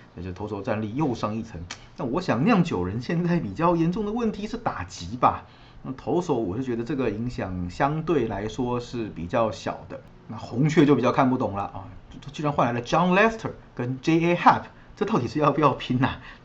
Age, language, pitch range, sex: 30-49, Chinese, 110-145 Hz, male